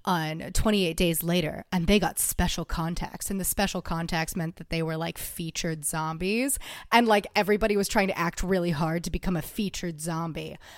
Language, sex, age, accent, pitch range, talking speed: English, female, 30-49, American, 170-225 Hz, 190 wpm